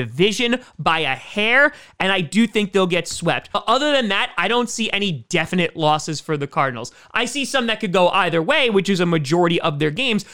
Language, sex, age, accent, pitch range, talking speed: English, male, 30-49, American, 160-210 Hz, 225 wpm